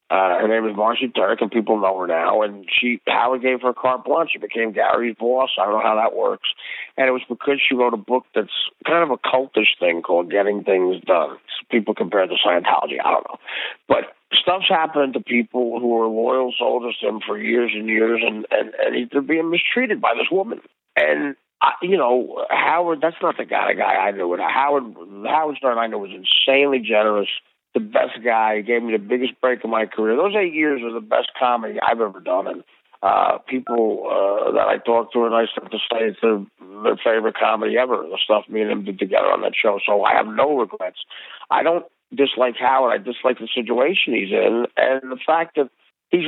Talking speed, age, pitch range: 225 wpm, 50-69, 110-140 Hz